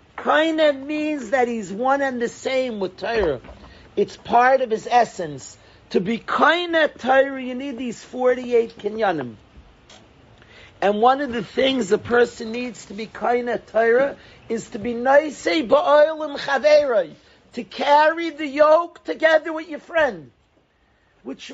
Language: English